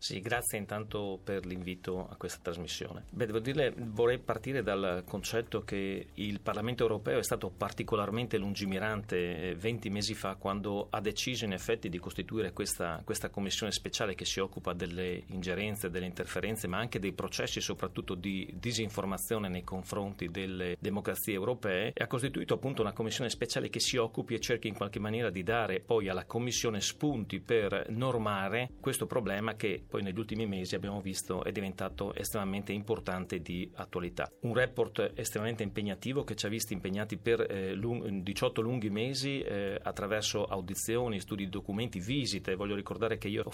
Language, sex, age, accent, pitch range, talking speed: Italian, male, 40-59, native, 95-115 Hz, 165 wpm